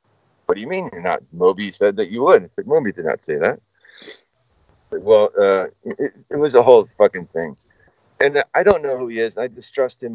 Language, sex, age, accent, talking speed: English, male, 50-69, American, 215 wpm